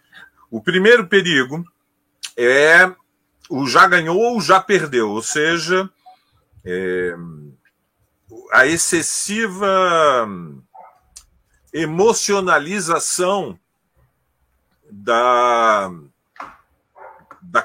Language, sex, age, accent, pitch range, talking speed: Portuguese, male, 40-59, Brazilian, 120-195 Hz, 60 wpm